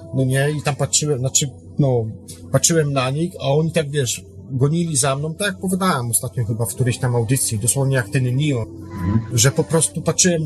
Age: 40-59